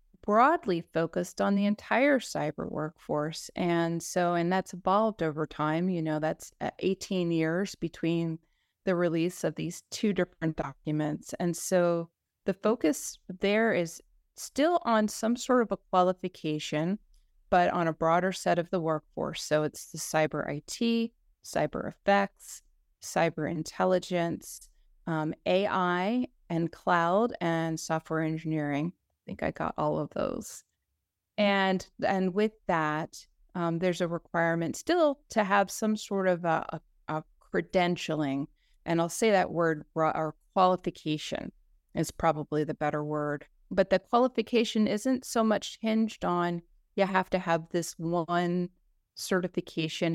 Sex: female